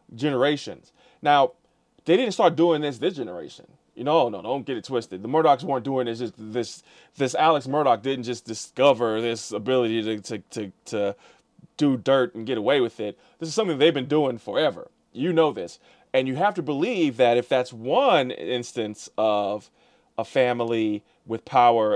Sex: male